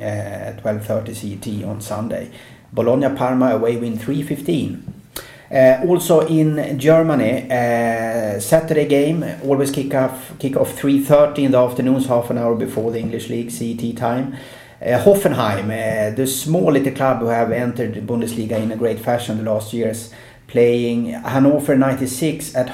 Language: English